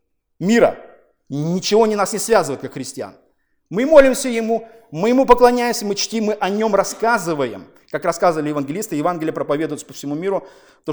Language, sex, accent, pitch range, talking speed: Russian, male, native, 175-230 Hz, 160 wpm